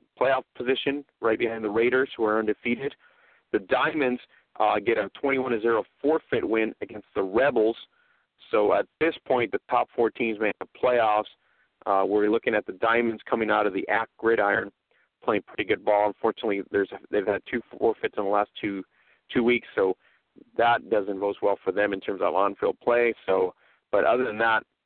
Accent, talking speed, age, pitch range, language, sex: American, 190 wpm, 40-59, 105-135 Hz, English, male